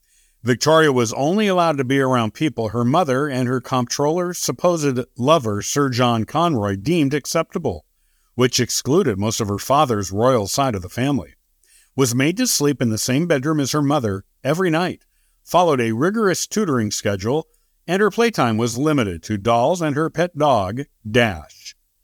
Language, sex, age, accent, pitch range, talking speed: English, male, 50-69, American, 115-160 Hz, 165 wpm